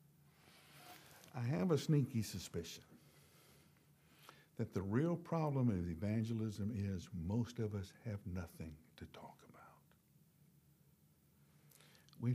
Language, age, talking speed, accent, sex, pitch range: English, 60-79, 100 wpm, American, male, 95-145 Hz